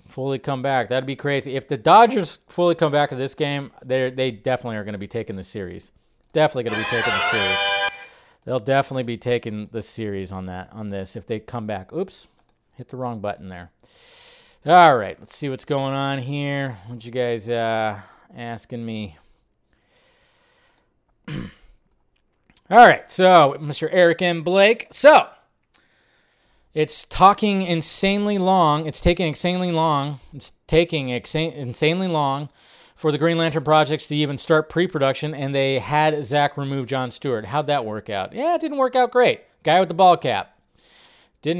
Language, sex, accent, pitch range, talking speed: English, male, American, 125-165 Hz, 175 wpm